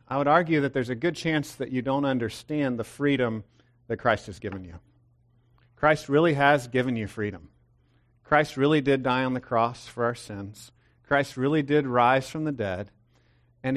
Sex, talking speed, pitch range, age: male, 190 wpm, 120-140 Hz, 50-69